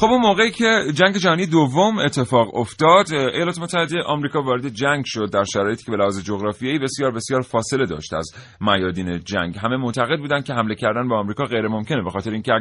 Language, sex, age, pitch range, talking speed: Persian, male, 30-49, 105-130 Hz, 190 wpm